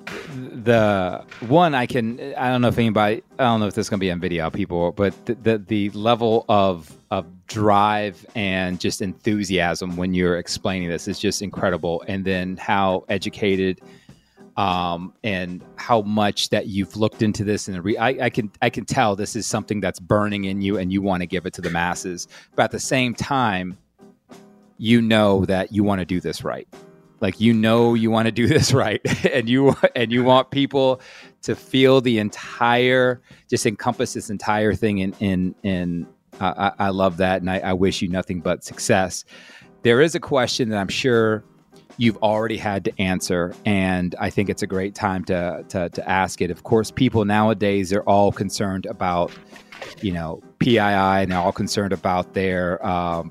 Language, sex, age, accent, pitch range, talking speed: English, male, 30-49, American, 95-115 Hz, 195 wpm